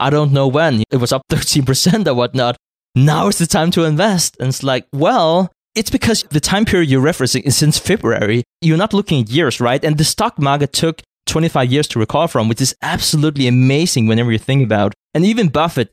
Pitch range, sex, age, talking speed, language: 120-160 Hz, male, 20-39, 215 wpm, English